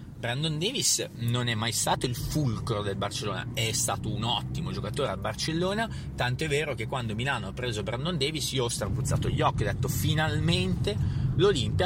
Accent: native